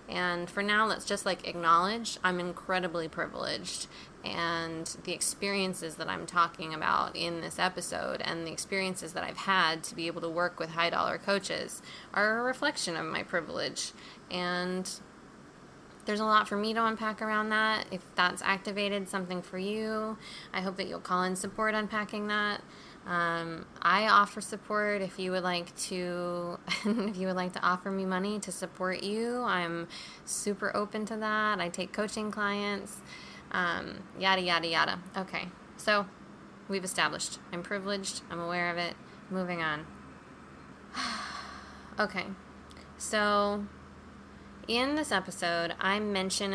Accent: American